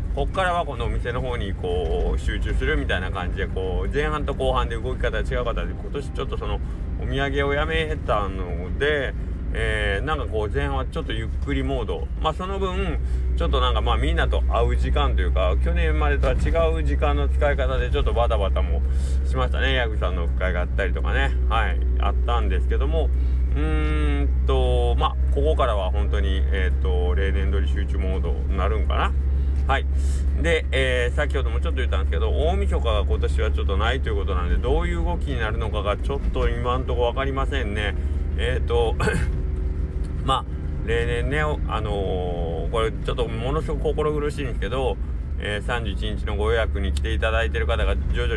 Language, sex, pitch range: Japanese, male, 65-75 Hz